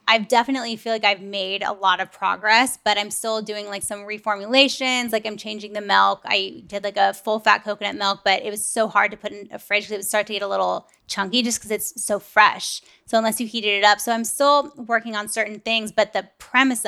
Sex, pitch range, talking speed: female, 205-235 Hz, 250 wpm